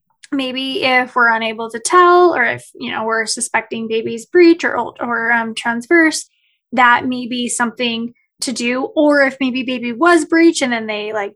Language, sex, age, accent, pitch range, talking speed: English, female, 20-39, American, 240-300 Hz, 180 wpm